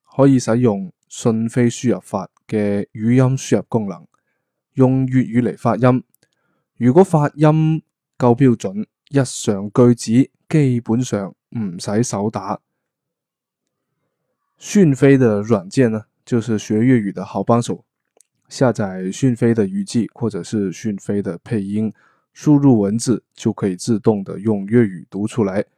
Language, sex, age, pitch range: Chinese, male, 20-39, 105-130 Hz